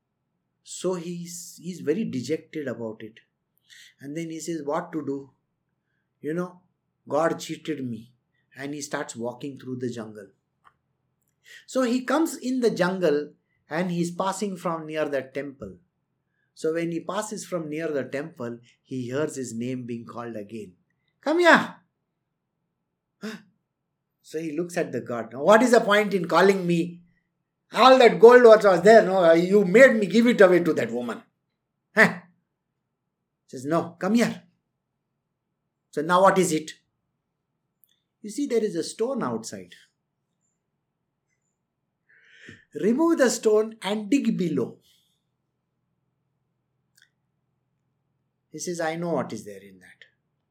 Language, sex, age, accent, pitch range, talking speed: English, male, 50-69, Indian, 140-195 Hz, 140 wpm